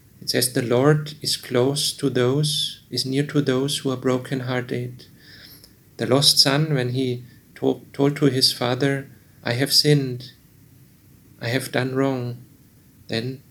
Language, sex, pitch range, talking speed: English, male, 125-140 Hz, 140 wpm